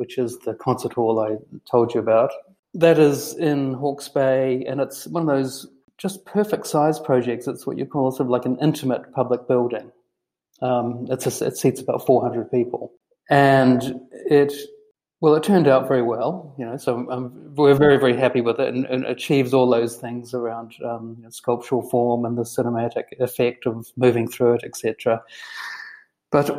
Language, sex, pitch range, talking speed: English, male, 120-140 Hz, 185 wpm